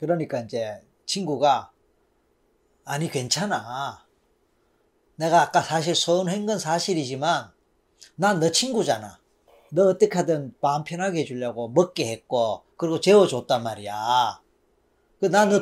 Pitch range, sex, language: 165-225 Hz, male, Korean